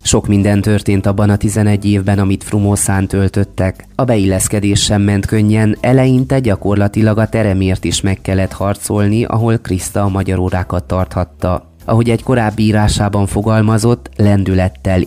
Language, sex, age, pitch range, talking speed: Hungarian, male, 30-49, 95-110 Hz, 140 wpm